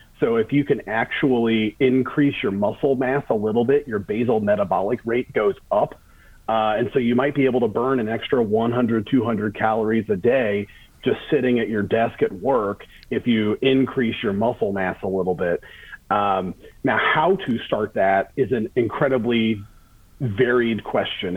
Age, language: 30-49, English